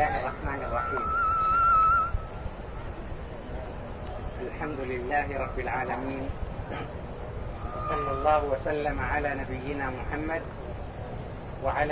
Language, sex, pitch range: English, male, 145-180 Hz